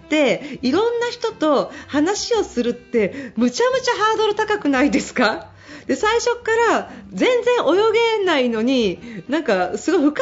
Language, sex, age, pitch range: Japanese, female, 40-59, 245-400 Hz